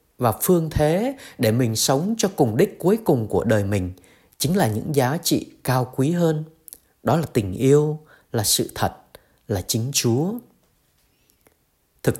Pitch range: 115-180 Hz